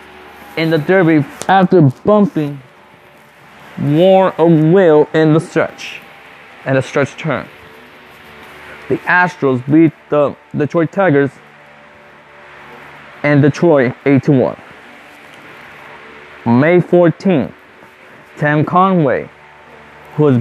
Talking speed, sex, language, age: 90 wpm, male, English, 20-39